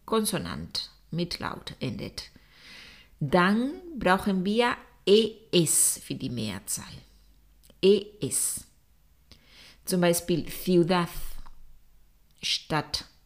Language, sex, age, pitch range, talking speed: Spanish, female, 50-69, 155-205 Hz, 70 wpm